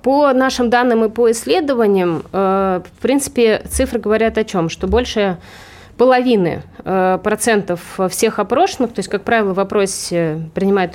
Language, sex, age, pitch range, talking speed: Russian, female, 20-39, 180-235 Hz, 135 wpm